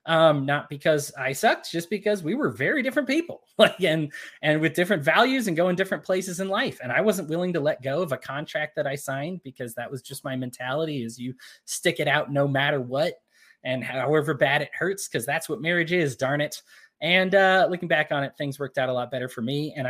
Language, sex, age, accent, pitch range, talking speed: English, male, 20-39, American, 130-190 Hz, 235 wpm